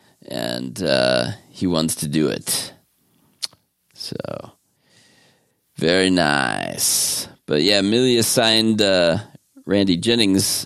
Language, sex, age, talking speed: English, male, 40-59, 95 wpm